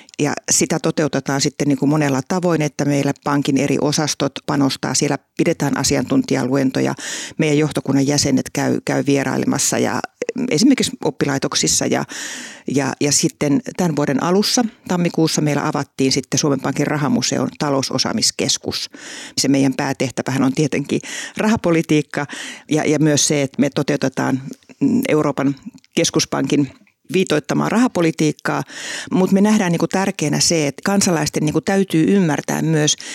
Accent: native